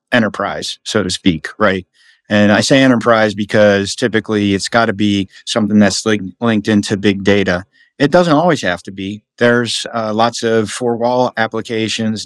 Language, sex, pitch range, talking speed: English, male, 105-120 Hz, 165 wpm